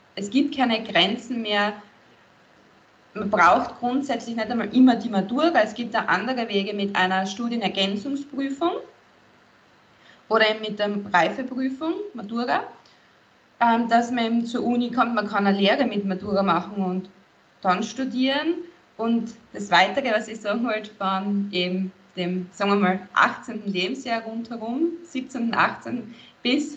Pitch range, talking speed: 190-235 Hz, 135 wpm